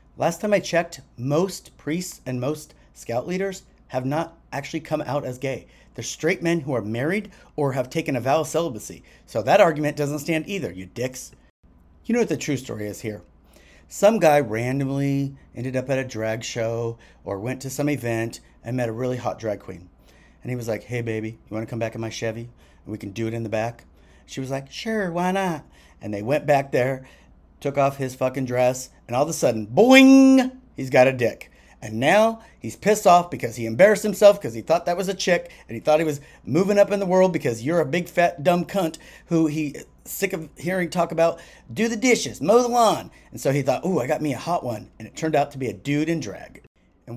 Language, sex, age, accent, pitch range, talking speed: English, male, 40-59, American, 115-170 Hz, 230 wpm